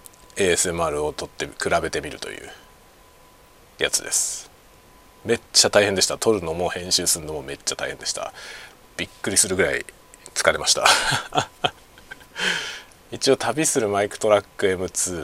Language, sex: Japanese, male